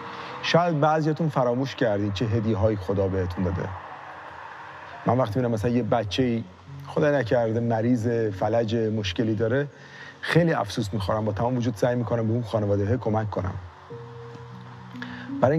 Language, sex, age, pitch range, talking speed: Persian, male, 40-59, 110-145 Hz, 135 wpm